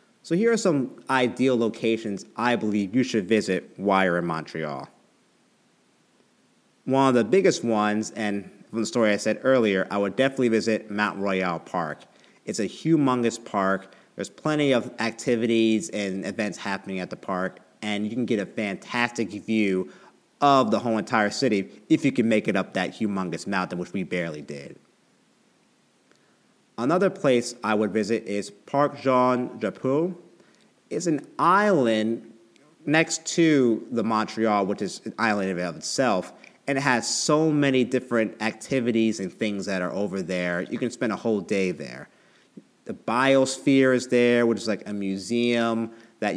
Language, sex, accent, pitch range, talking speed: English, male, American, 100-125 Hz, 160 wpm